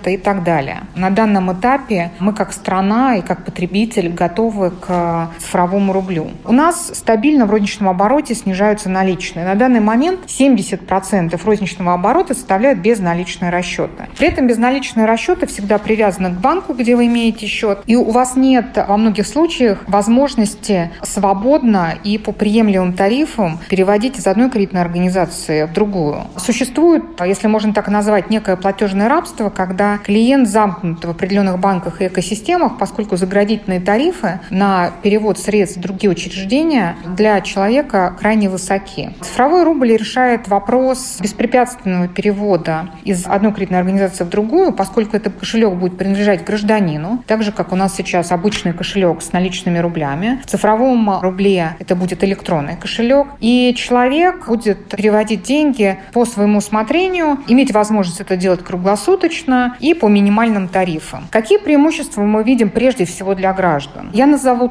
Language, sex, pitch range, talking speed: Russian, female, 190-235 Hz, 145 wpm